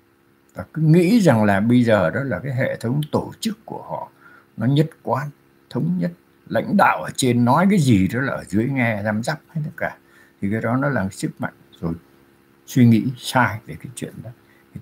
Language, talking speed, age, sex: Vietnamese, 220 wpm, 60-79, male